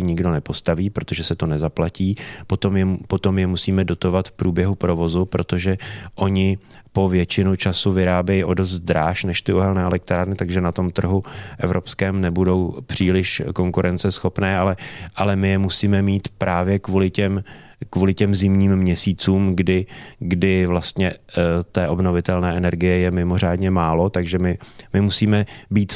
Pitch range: 90-100 Hz